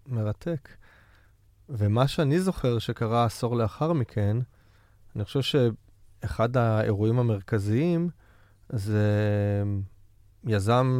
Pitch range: 105-145 Hz